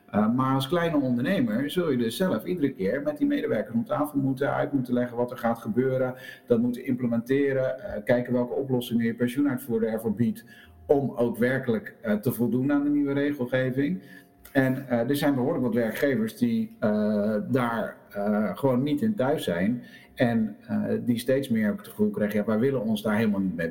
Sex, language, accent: male, Dutch, Dutch